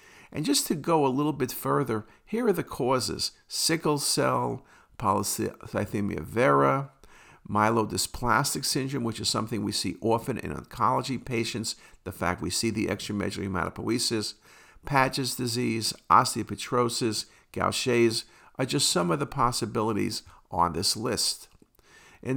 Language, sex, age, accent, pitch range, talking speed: English, male, 50-69, American, 105-130 Hz, 130 wpm